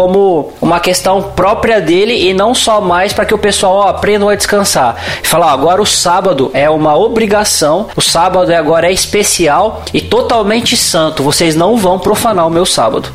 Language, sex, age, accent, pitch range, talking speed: Portuguese, male, 20-39, Brazilian, 150-185 Hz, 185 wpm